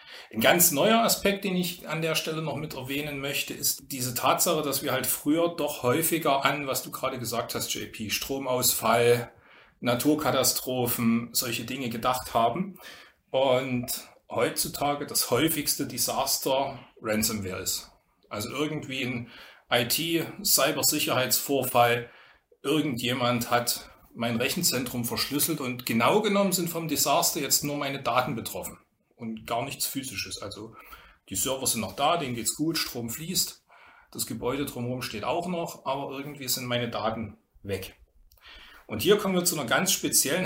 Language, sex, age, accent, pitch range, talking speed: German, male, 30-49, German, 120-150 Hz, 145 wpm